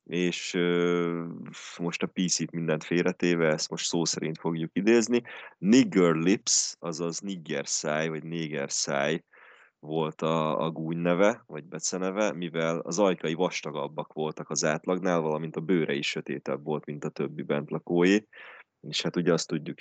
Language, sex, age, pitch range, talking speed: Hungarian, male, 20-39, 75-90 Hz, 140 wpm